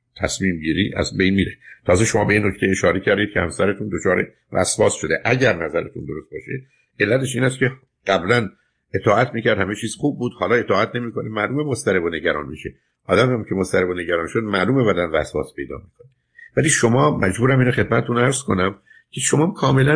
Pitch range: 95-120 Hz